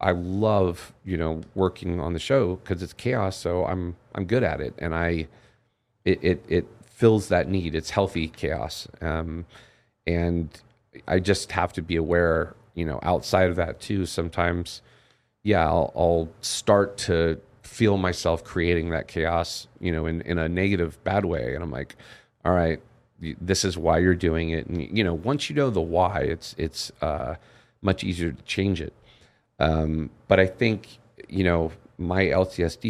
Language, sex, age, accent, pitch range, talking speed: English, male, 40-59, American, 85-110 Hz, 175 wpm